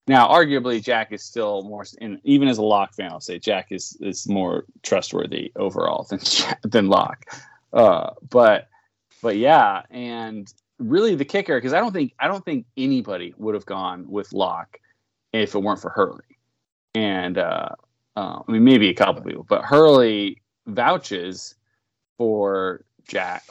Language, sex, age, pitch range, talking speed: English, male, 20-39, 100-120 Hz, 165 wpm